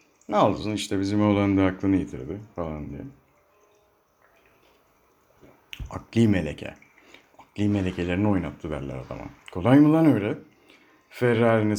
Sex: male